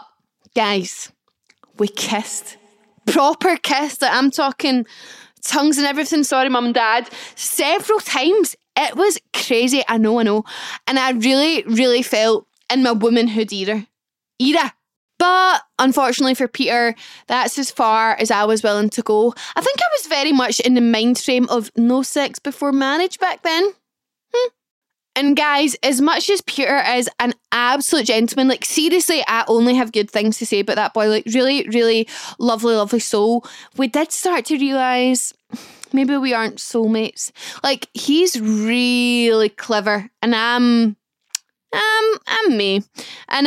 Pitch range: 230-295 Hz